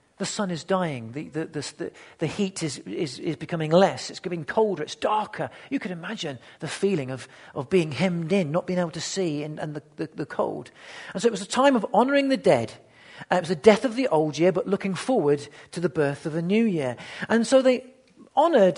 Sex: male